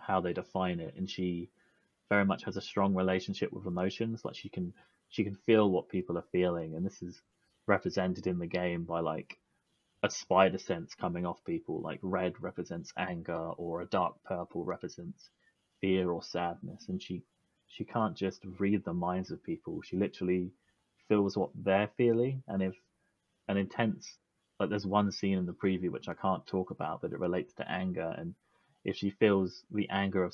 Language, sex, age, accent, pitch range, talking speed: English, male, 20-39, British, 90-100 Hz, 190 wpm